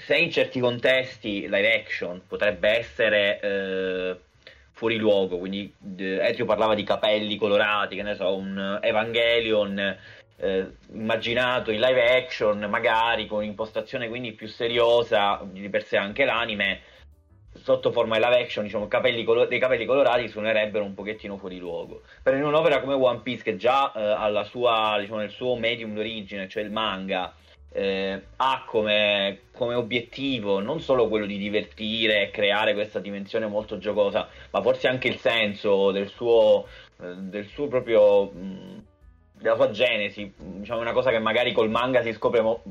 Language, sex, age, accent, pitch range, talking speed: Italian, male, 30-49, native, 100-125 Hz, 155 wpm